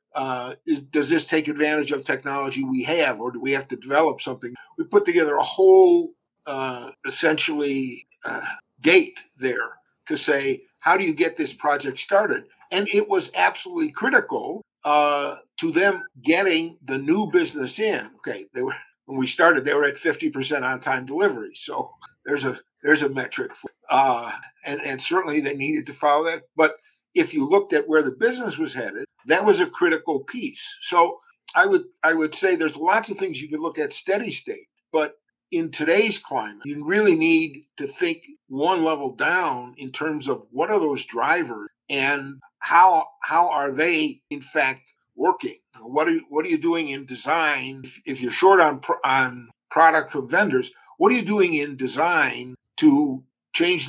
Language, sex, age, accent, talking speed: English, male, 50-69, American, 185 wpm